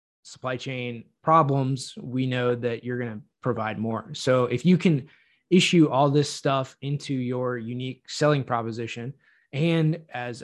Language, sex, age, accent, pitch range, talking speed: English, male, 20-39, American, 120-145 Hz, 150 wpm